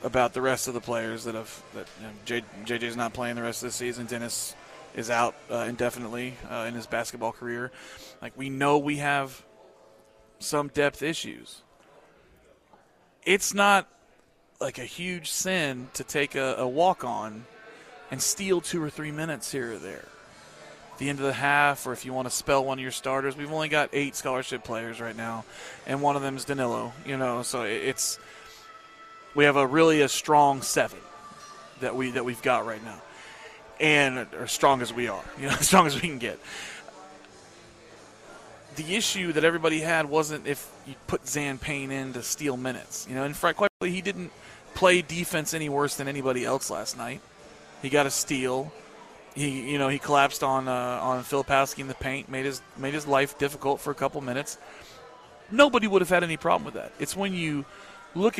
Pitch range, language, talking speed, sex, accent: 125-155 Hz, English, 195 wpm, male, American